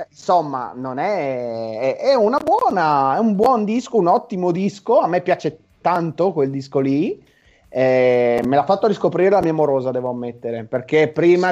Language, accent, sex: Italian, native, male